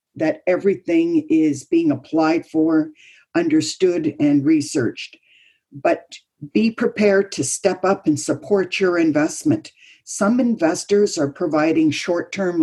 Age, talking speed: 50-69, 115 wpm